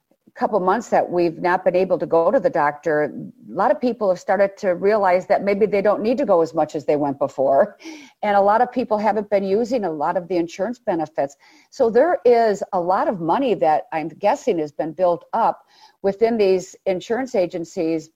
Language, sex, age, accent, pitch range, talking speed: English, female, 50-69, American, 175-225 Hz, 220 wpm